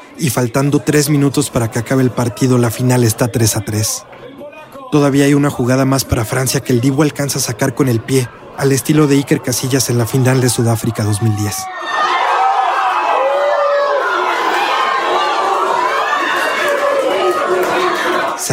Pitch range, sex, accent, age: 115-140 Hz, male, Mexican, 30-49